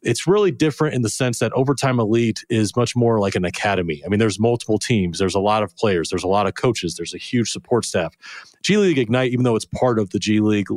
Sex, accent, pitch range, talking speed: male, American, 100-120 Hz, 255 wpm